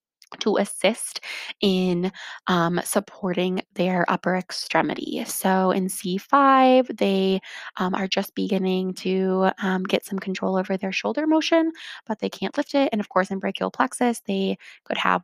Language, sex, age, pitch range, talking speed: English, female, 20-39, 180-225 Hz, 155 wpm